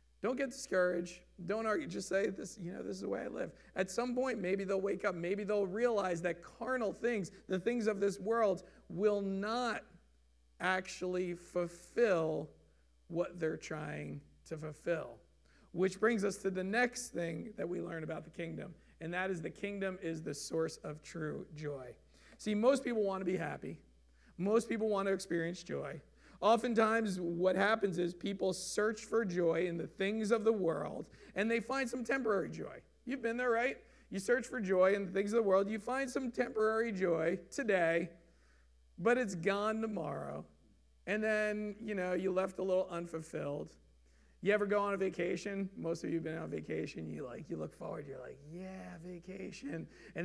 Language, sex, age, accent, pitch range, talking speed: English, male, 40-59, American, 170-215 Hz, 185 wpm